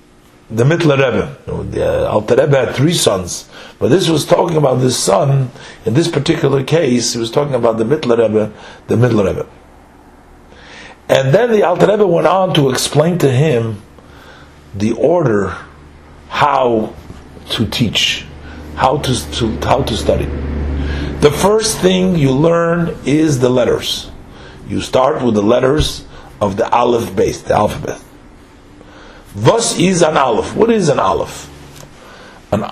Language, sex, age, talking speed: English, male, 50-69, 150 wpm